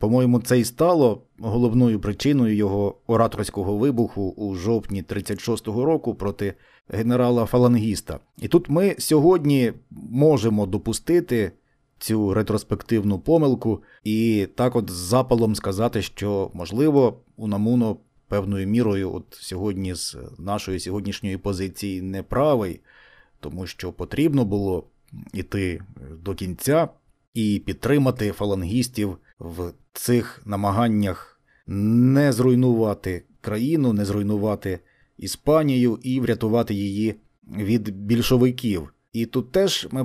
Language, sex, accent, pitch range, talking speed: Ukrainian, male, native, 100-125 Hz, 105 wpm